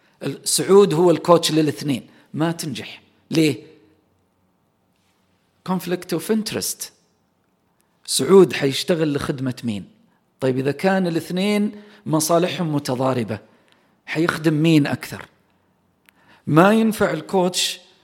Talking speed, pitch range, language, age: 85 wpm, 140-195 Hz, Arabic, 40-59